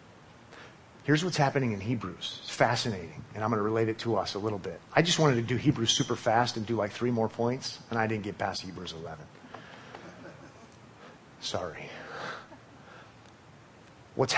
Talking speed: 165 wpm